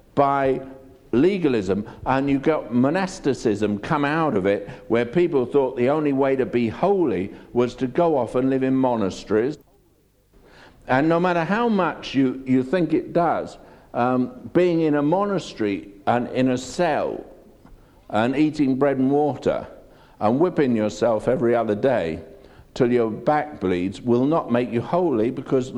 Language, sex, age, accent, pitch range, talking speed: English, male, 60-79, British, 130-180 Hz, 155 wpm